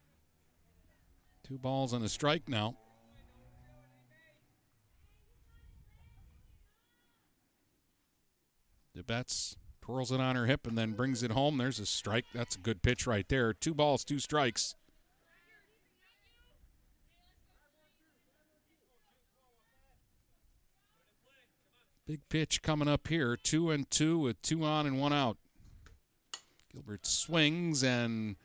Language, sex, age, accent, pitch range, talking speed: English, male, 50-69, American, 100-140 Hz, 100 wpm